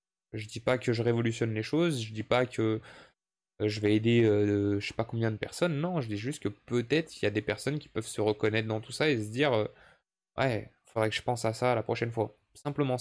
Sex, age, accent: male, 20-39, French